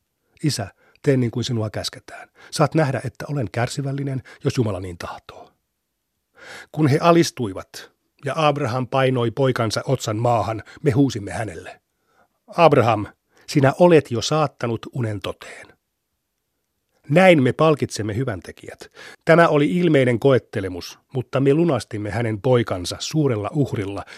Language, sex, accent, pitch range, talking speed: Finnish, male, native, 110-145 Hz, 120 wpm